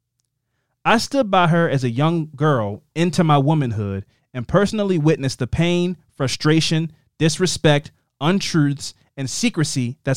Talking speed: 130 wpm